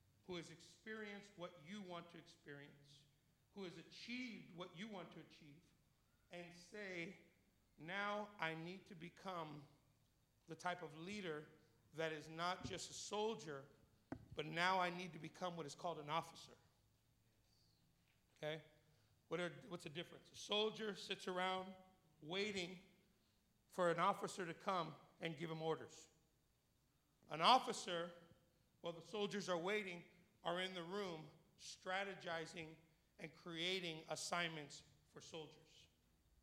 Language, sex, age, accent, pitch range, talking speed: English, male, 50-69, American, 155-205 Hz, 130 wpm